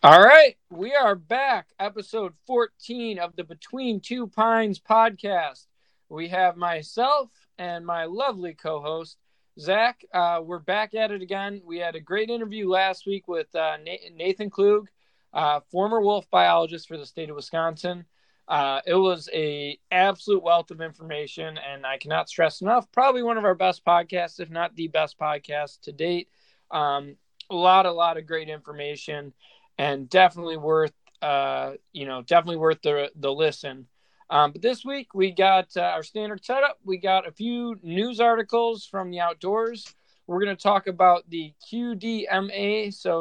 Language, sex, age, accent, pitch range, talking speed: English, male, 20-39, American, 160-205 Hz, 165 wpm